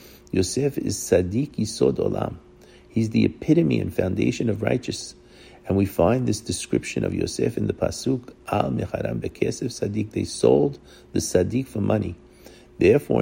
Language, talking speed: English, 145 wpm